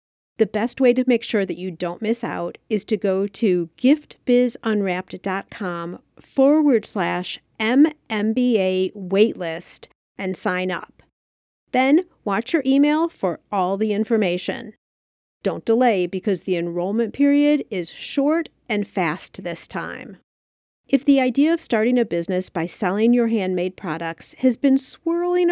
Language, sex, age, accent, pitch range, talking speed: English, female, 50-69, American, 185-265 Hz, 135 wpm